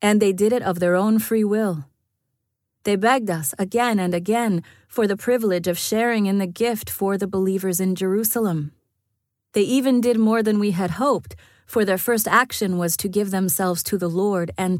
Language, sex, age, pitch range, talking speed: English, female, 30-49, 155-210 Hz, 195 wpm